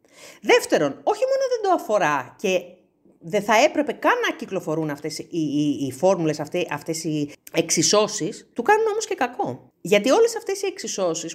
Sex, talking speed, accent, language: female, 165 wpm, native, Greek